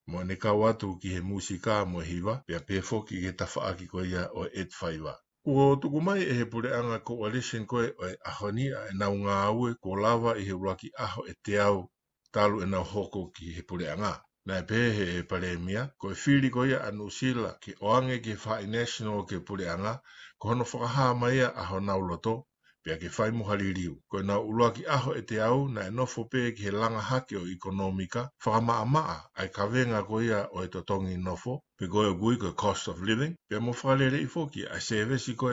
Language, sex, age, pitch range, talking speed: English, male, 60-79, 95-120 Hz, 170 wpm